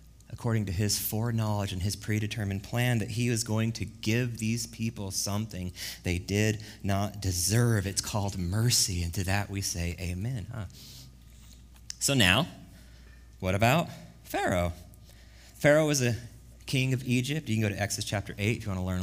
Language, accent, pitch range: English, American, 105-160 Hz